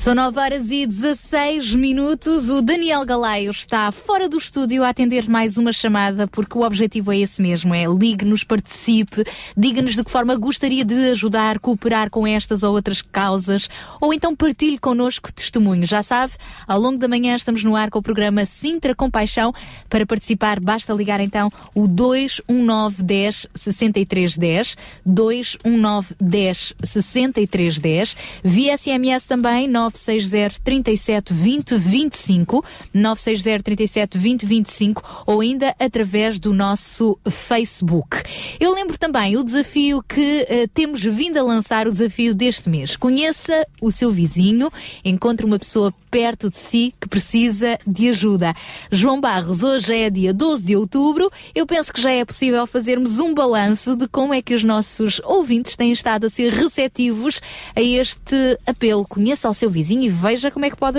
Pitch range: 210-255 Hz